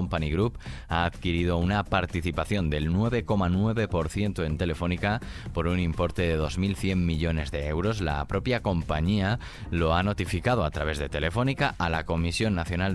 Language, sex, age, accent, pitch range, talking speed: Spanish, male, 30-49, Spanish, 80-105 Hz, 150 wpm